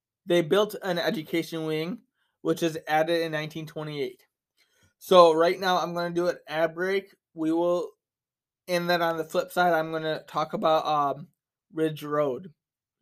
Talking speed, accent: 155 wpm, American